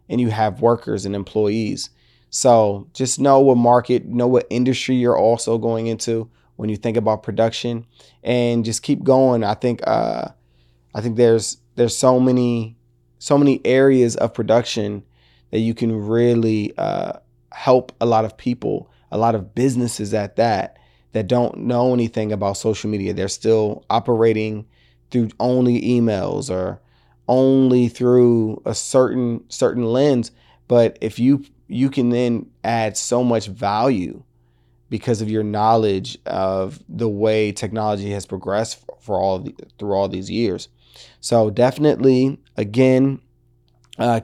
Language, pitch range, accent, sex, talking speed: English, 110-130 Hz, American, male, 150 wpm